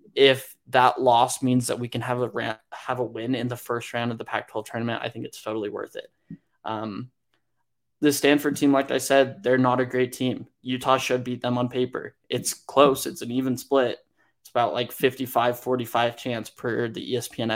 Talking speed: 200 wpm